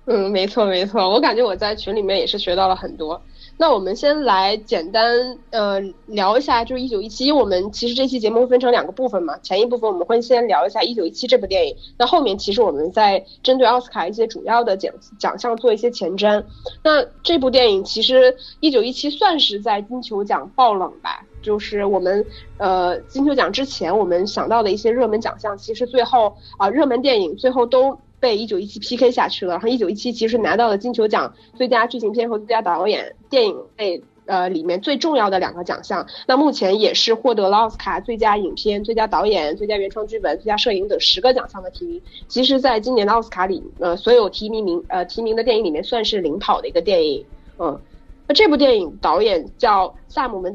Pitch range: 205-265 Hz